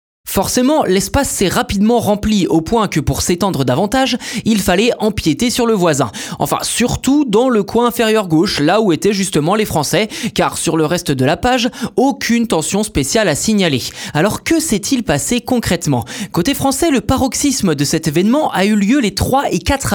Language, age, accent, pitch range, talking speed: French, 20-39, French, 155-230 Hz, 185 wpm